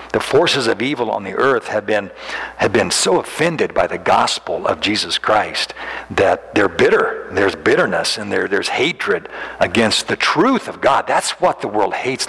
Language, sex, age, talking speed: English, male, 60-79, 185 wpm